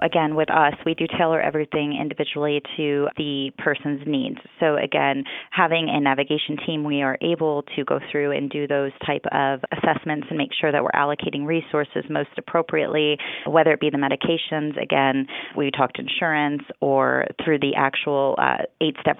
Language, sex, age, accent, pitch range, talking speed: English, female, 30-49, American, 140-160 Hz, 170 wpm